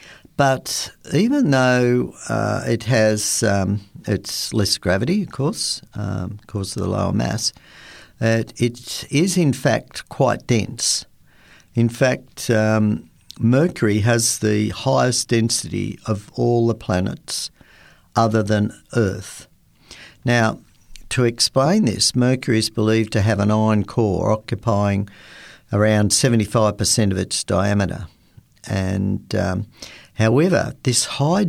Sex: male